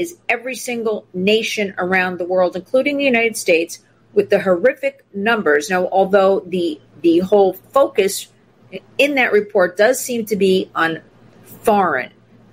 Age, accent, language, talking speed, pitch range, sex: 50-69, American, English, 145 wpm, 175-240 Hz, female